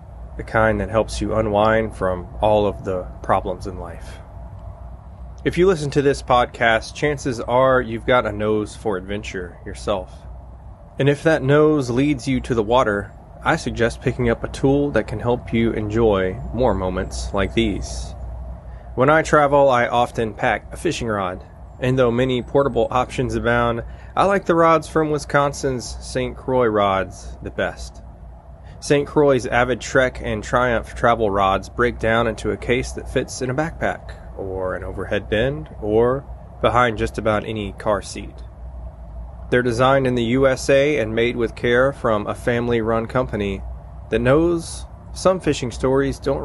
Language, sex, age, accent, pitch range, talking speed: English, male, 20-39, American, 95-130 Hz, 165 wpm